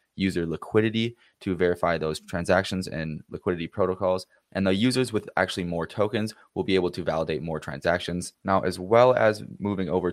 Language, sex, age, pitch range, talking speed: English, male, 20-39, 85-100 Hz, 170 wpm